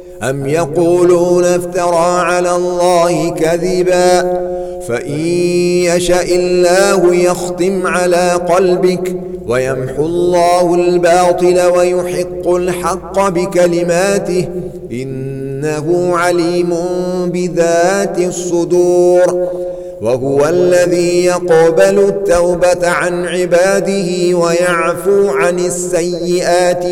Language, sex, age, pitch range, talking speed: Arabic, male, 40-59, 175-180 Hz, 70 wpm